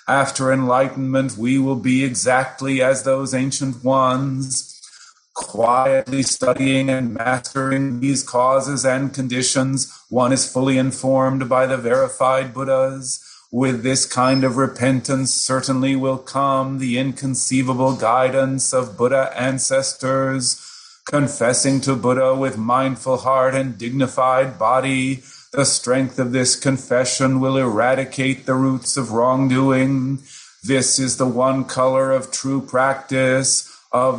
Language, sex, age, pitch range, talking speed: English, male, 40-59, 130-135 Hz, 120 wpm